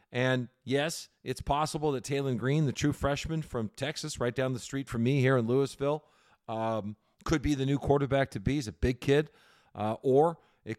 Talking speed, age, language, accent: 195 wpm, 40-59, English, American